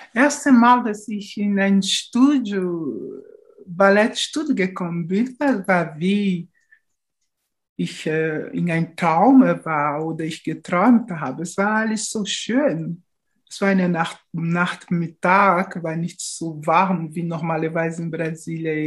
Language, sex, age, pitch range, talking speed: German, male, 60-79, 175-210 Hz, 125 wpm